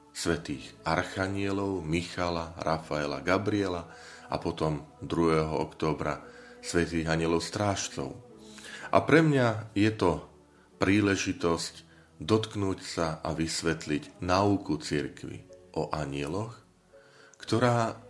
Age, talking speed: 40-59, 90 wpm